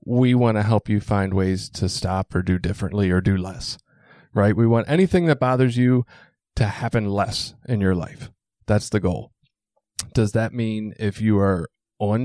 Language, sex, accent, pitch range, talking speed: English, male, American, 105-140 Hz, 185 wpm